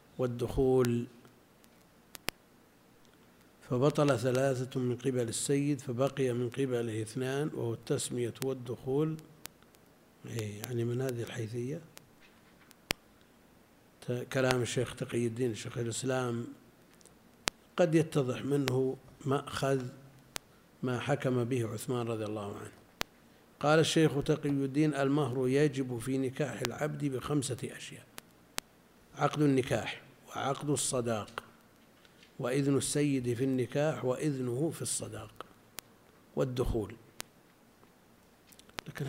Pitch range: 120-140 Hz